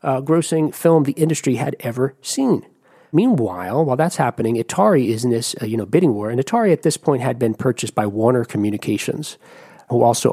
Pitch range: 115-155 Hz